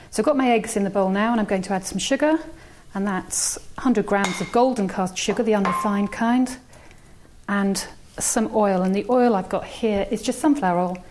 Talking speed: 215 wpm